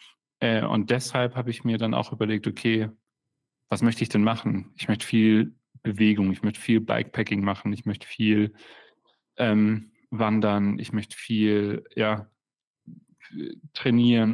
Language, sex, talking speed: German, male, 140 wpm